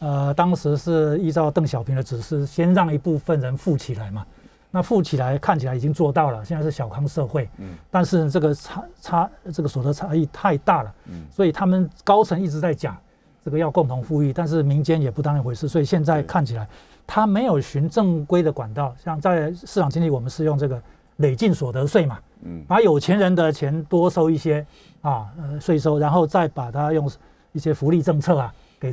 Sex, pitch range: male, 135-175 Hz